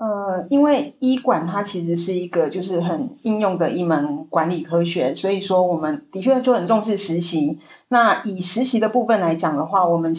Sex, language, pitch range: female, Chinese, 170-220 Hz